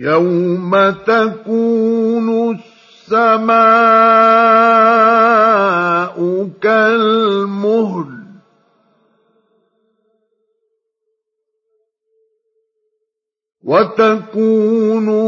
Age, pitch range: 50-69, 200-280 Hz